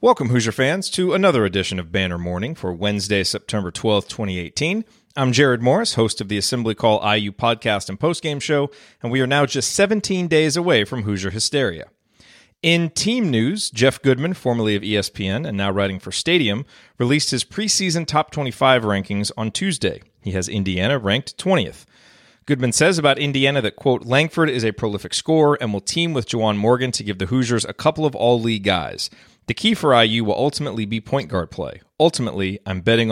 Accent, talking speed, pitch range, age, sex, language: American, 190 wpm, 100-135 Hz, 40-59, male, English